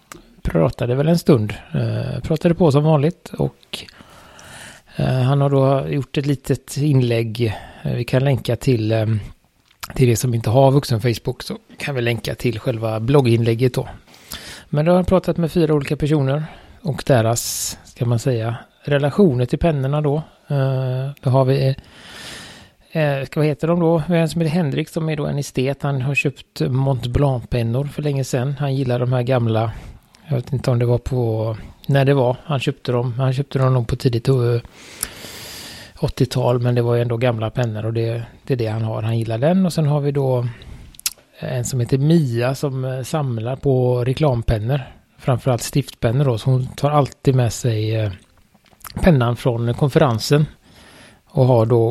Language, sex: Swedish, male